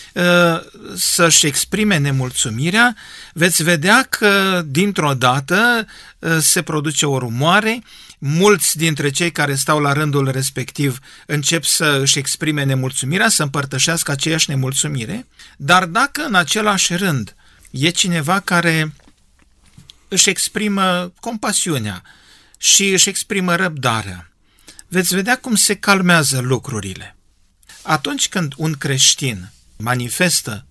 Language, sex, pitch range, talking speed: Romanian, male, 140-190 Hz, 105 wpm